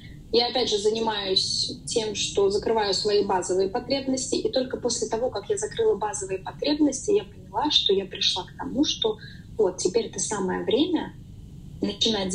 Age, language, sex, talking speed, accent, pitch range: 20-39, Russian, female, 160 wpm, native, 185-255 Hz